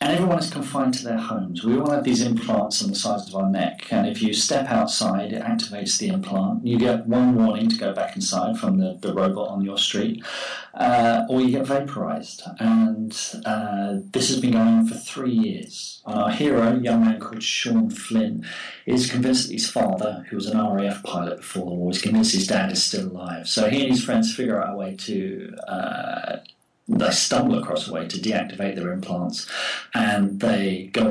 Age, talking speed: 40-59, 205 wpm